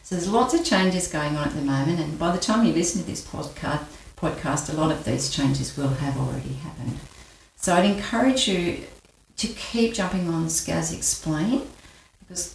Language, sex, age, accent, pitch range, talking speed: English, female, 50-69, Australian, 145-180 Hz, 185 wpm